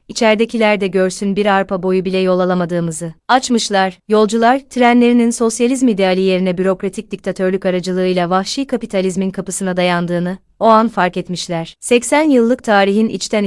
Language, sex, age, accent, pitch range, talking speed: Turkish, female, 30-49, native, 185-220 Hz, 135 wpm